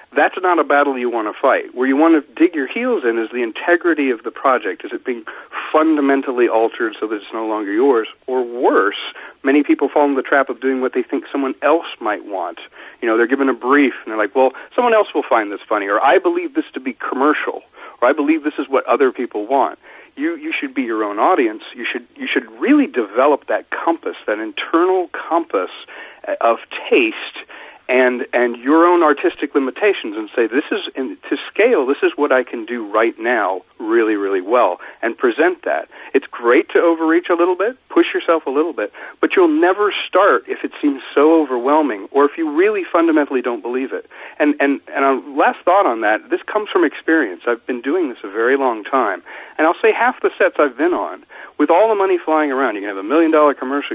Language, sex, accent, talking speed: English, male, American, 220 wpm